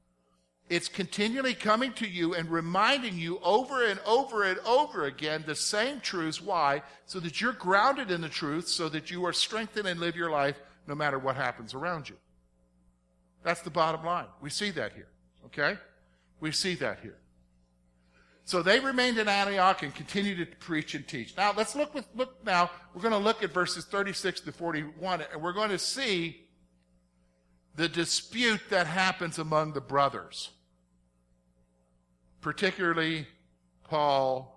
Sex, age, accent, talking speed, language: male, 50-69, American, 160 wpm, English